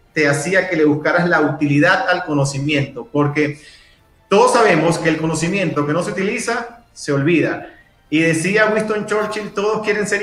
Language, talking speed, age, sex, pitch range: Spanish, 165 wpm, 30-49, male, 145-185 Hz